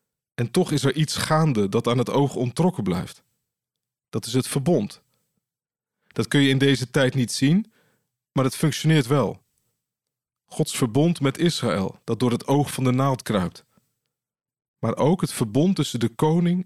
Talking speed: 170 wpm